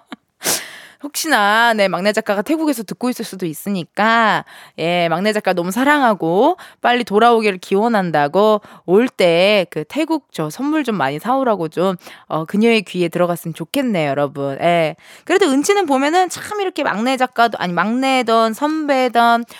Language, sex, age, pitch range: Korean, female, 20-39, 195-280 Hz